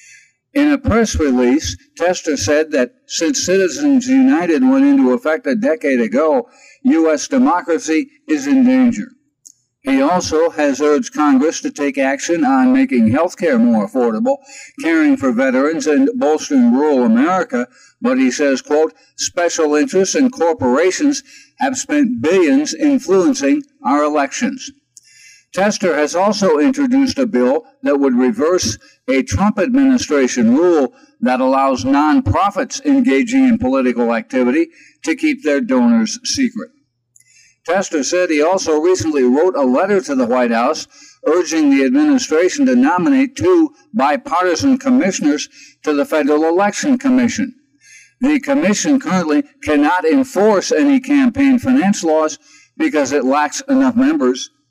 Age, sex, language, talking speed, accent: 60-79, male, English, 130 wpm, American